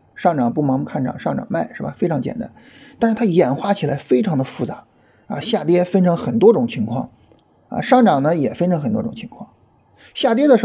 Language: Chinese